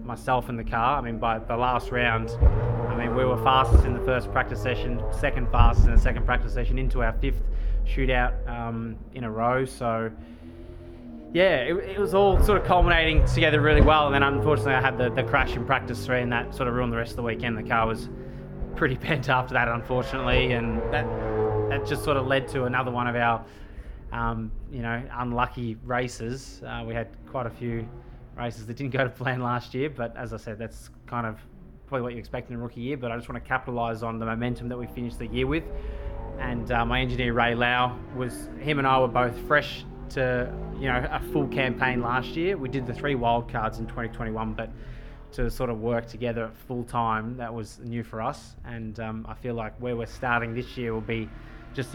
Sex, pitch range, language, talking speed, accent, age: male, 115-125 Hz, English, 220 wpm, Australian, 20-39